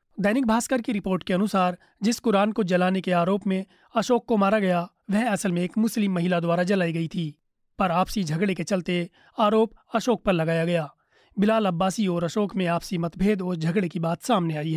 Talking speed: 205 wpm